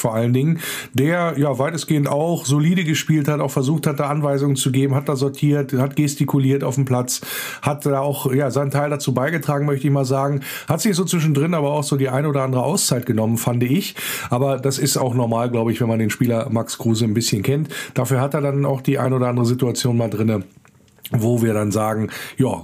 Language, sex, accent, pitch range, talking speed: German, male, German, 125-145 Hz, 225 wpm